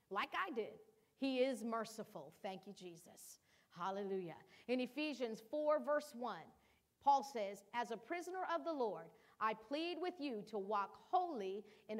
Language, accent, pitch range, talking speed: English, American, 215-305 Hz, 155 wpm